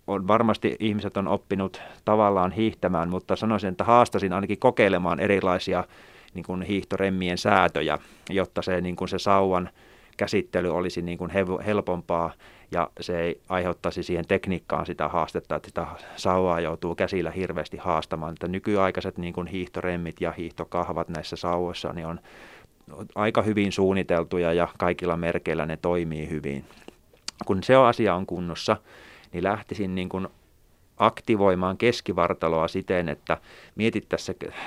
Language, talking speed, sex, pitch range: Finnish, 130 wpm, male, 85-100 Hz